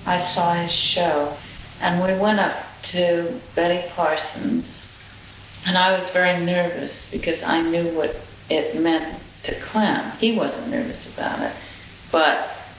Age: 50-69